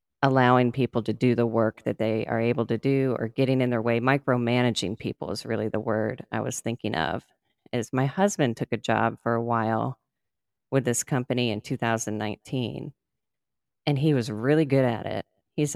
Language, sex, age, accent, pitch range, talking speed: English, female, 40-59, American, 115-135 Hz, 185 wpm